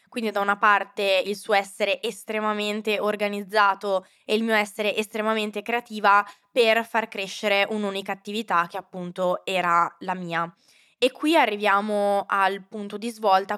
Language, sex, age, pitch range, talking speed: Italian, female, 20-39, 195-215 Hz, 140 wpm